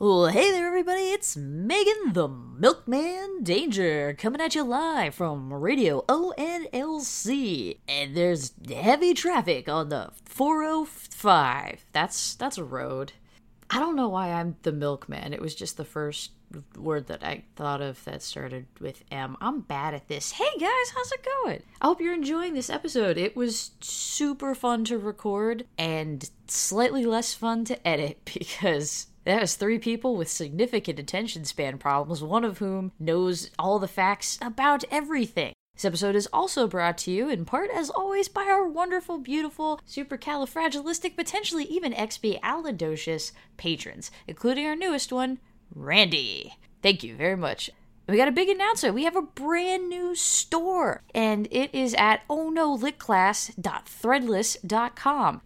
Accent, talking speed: American, 150 wpm